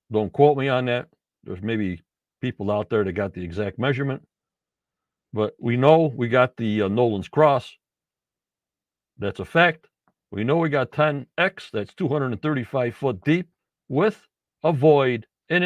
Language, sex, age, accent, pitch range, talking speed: English, male, 60-79, American, 115-165 Hz, 155 wpm